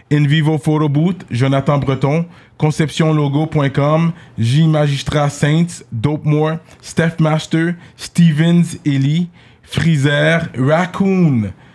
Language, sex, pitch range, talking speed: French, male, 130-160 Hz, 85 wpm